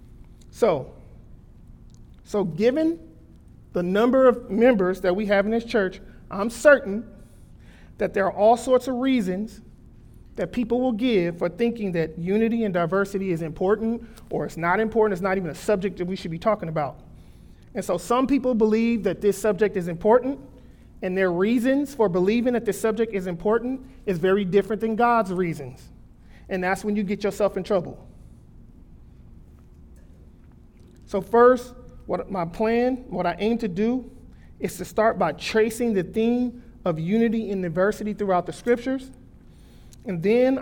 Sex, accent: male, American